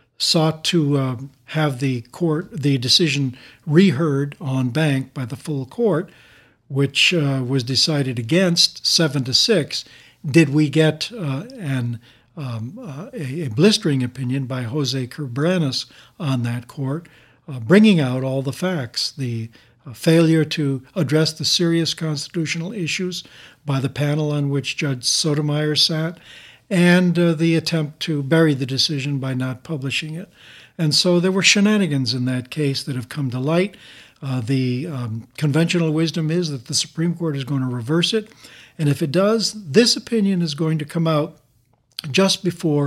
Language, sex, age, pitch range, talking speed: English, male, 60-79, 130-165 Hz, 160 wpm